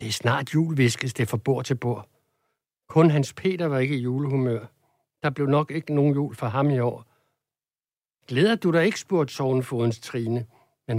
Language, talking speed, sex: Danish, 190 wpm, male